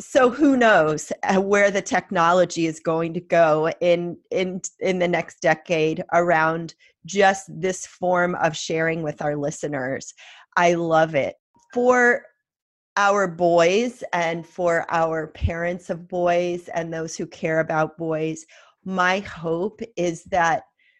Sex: female